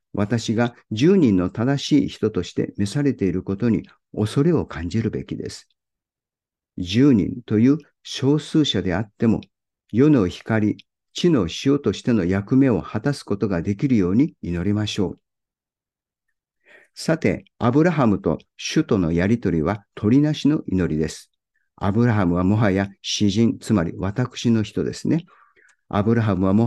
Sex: male